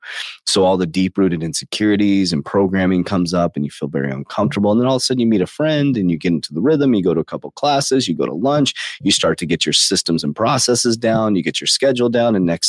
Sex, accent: male, American